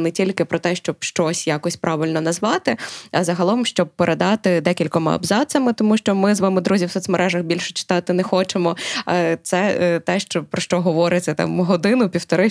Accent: native